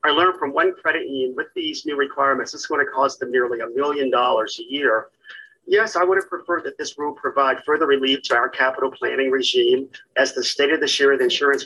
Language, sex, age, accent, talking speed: English, male, 50-69, American, 230 wpm